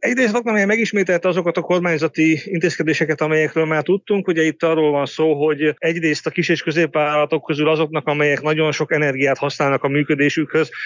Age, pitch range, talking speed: 30-49, 140-160 Hz, 165 wpm